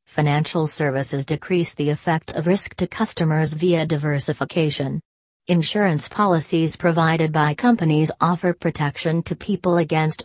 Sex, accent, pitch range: female, American, 145-175 Hz